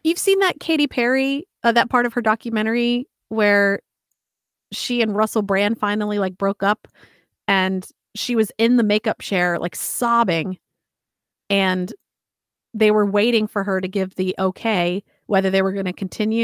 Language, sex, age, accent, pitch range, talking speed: English, female, 30-49, American, 195-235 Hz, 165 wpm